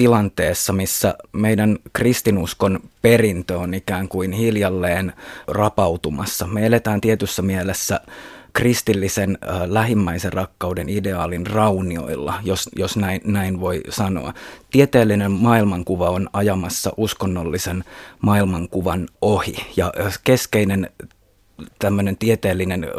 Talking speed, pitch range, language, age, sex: 95 wpm, 95-105 Hz, Finnish, 30-49, male